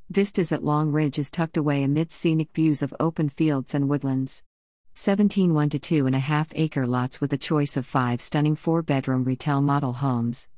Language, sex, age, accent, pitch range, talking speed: English, female, 50-69, American, 135-160 Hz, 195 wpm